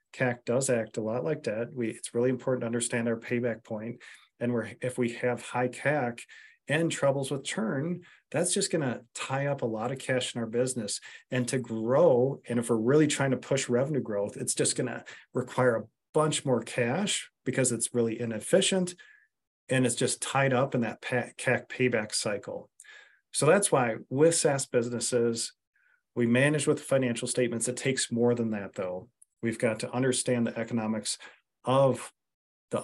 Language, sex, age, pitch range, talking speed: English, male, 40-59, 115-135 Hz, 175 wpm